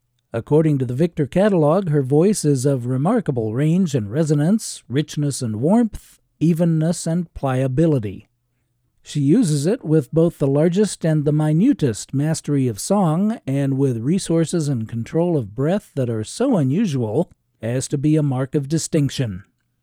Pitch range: 130-180 Hz